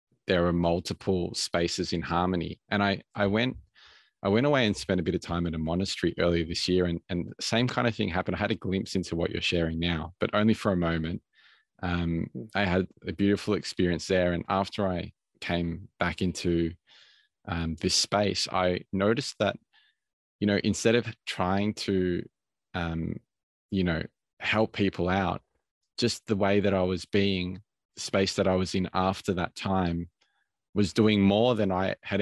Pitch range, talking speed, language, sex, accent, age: 85-100 Hz, 185 wpm, English, male, Australian, 20-39